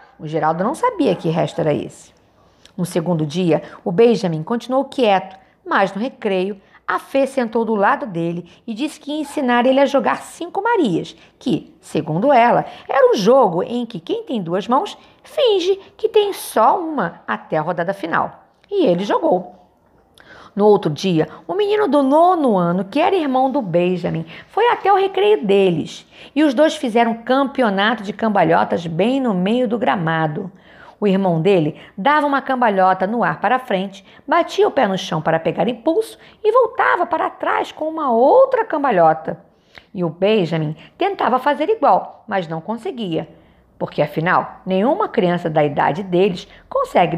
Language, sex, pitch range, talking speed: Portuguese, female, 185-305 Hz, 170 wpm